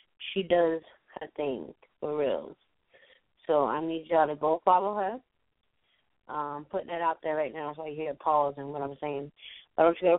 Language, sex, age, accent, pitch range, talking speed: English, female, 20-39, American, 155-180 Hz, 200 wpm